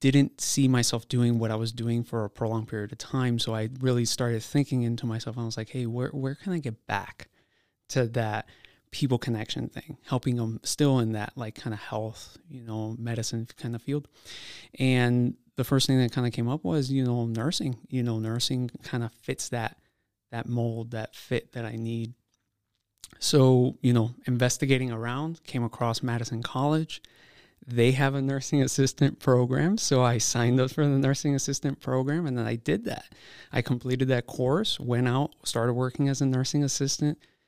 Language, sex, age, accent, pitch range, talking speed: English, male, 20-39, American, 115-135 Hz, 190 wpm